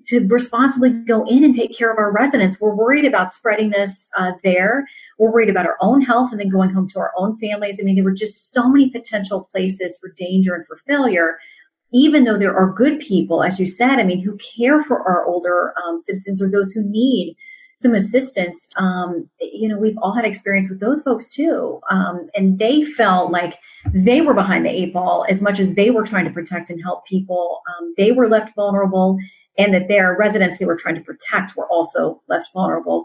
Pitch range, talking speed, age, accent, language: 180-230 Hz, 220 wpm, 30-49, American, English